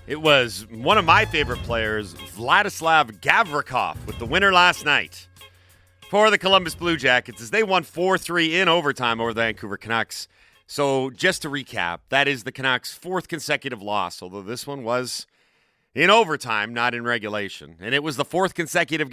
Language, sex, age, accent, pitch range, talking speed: English, male, 40-59, American, 110-170 Hz, 175 wpm